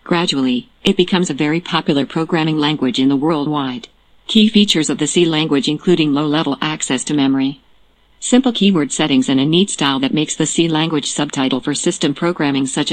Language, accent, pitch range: English, American, 145-170 Hz